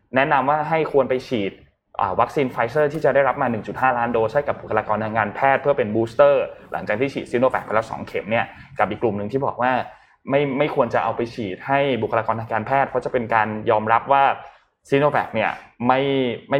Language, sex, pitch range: Thai, male, 110-140 Hz